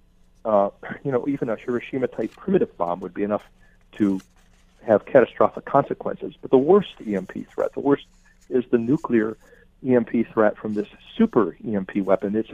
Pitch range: 105-130 Hz